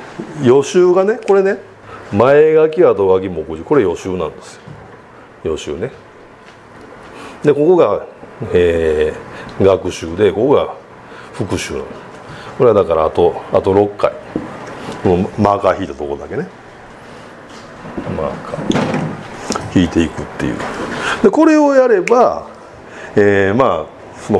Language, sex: Japanese, male